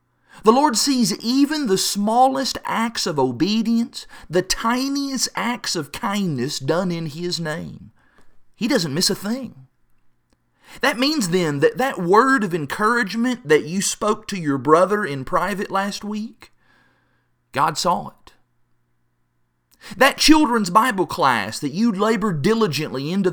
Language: English